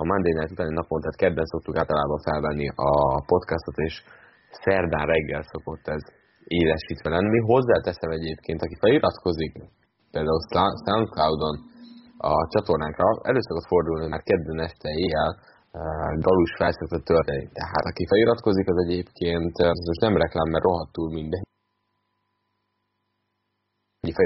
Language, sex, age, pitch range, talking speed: Hungarian, male, 20-39, 80-90 Hz, 125 wpm